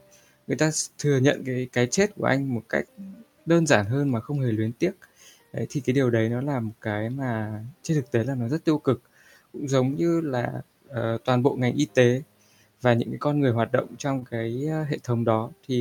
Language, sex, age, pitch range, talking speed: Vietnamese, male, 20-39, 110-145 Hz, 230 wpm